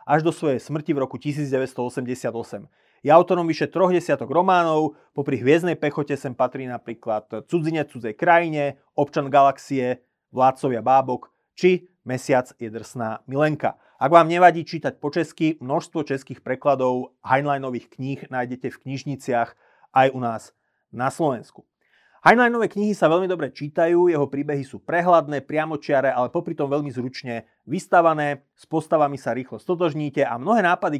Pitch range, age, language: 130-160 Hz, 30-49, Slovak